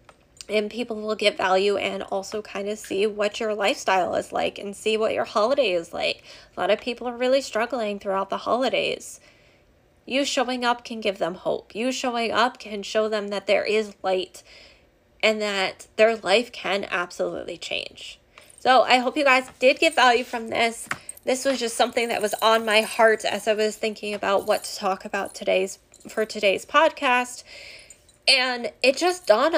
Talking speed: 185 wpm